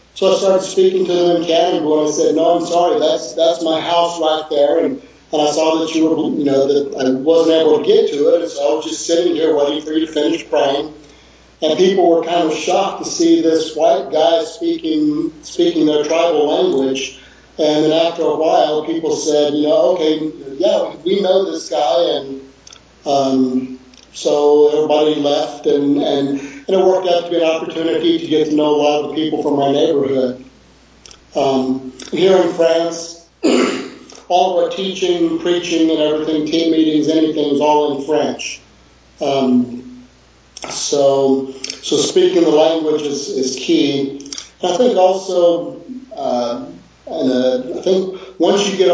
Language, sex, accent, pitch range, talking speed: English, male, American, 145-170 Hz, 180 wpm